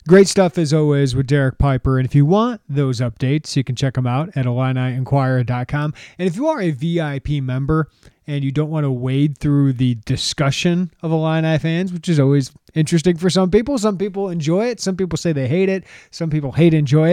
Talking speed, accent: 210 wpm, American